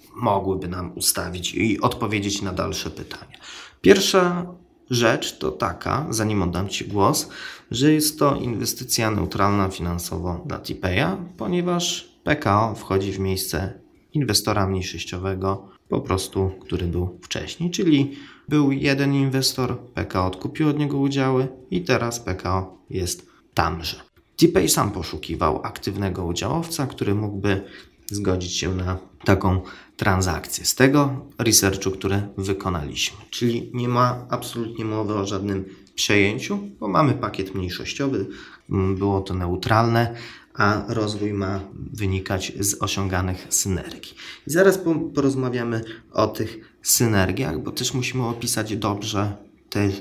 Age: 20-39